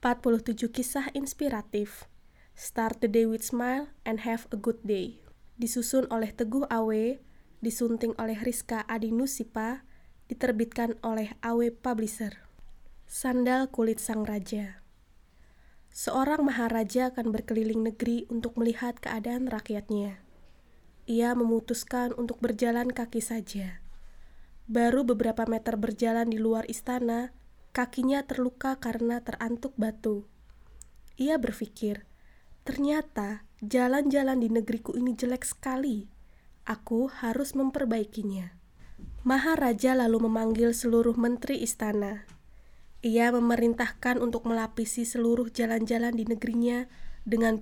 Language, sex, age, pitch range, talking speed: English, female, 20-39, 225-250 Hz, 105 wpm